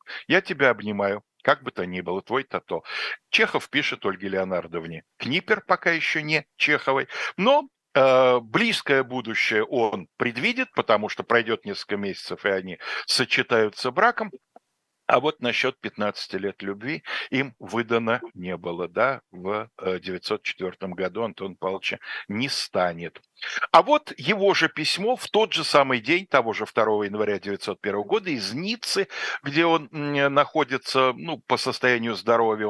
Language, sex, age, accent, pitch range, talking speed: Russian, male, 60-79, native, 100-160 Hz, 140 wpm